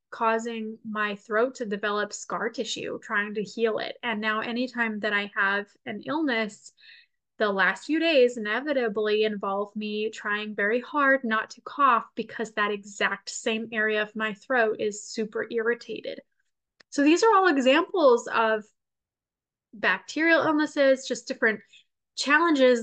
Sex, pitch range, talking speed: female, 215-265 Hz, 140 wpm